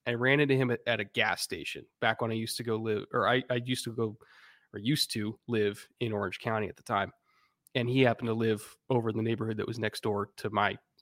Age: 20-39